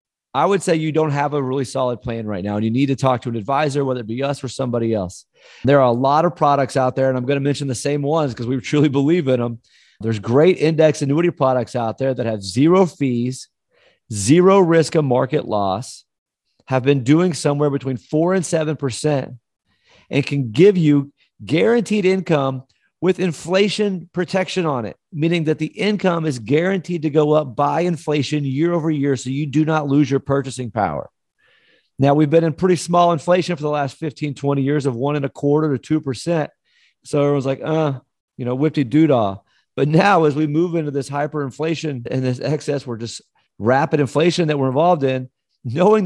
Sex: male